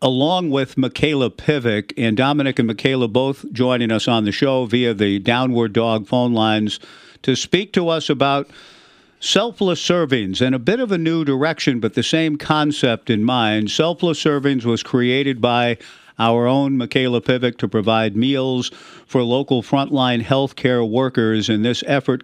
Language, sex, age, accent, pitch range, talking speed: English, male, 50-69, American, 115-140 Hz, 165 wpm